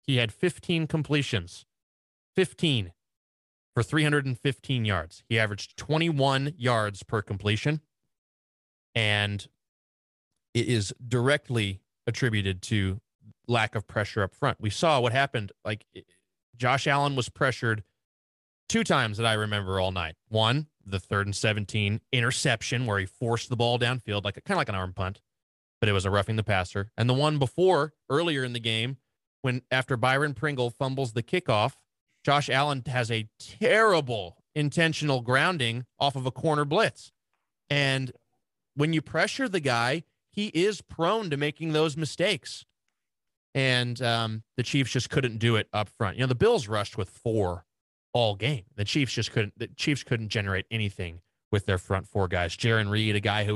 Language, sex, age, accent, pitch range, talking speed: English, male, 20-39, American, 100-135 Hz, 165 wpm